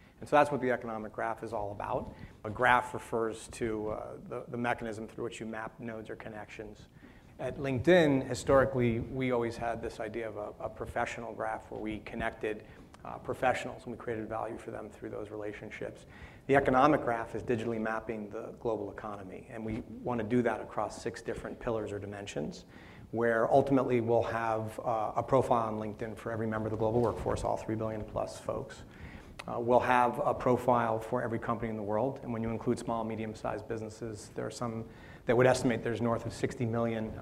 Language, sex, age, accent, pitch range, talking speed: English, male, 40-59, American, 110-120 Hz, 200 wpm